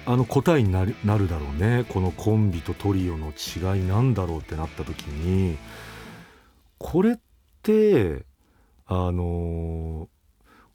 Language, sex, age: Japanese, male, 40-59